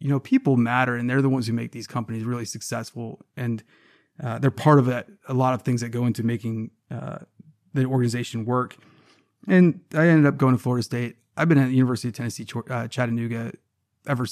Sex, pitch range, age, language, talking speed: male, 120-140 Hz, 30-49, English, 215 wpm